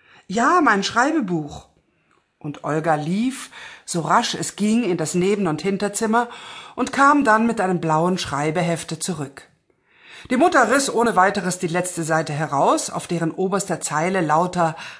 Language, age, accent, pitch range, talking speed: German, 50-69, German, 170-235 Hz, 150 wpm